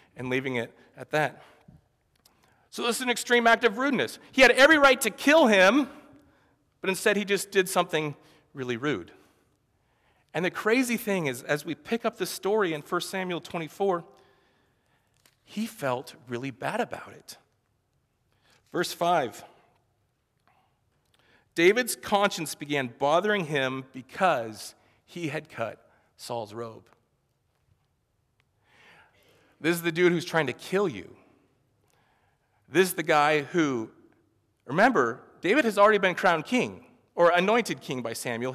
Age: 40-59